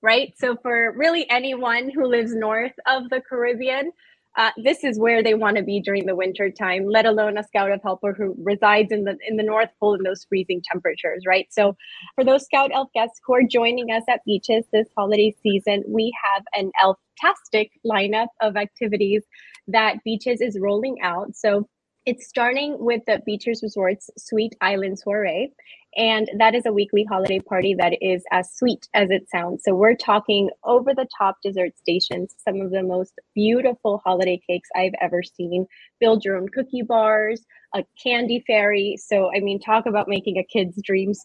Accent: American